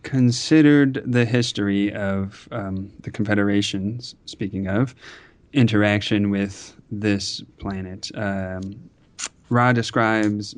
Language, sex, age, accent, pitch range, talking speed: English, male, 30-49, American, 100-115 Hz, 90 wpm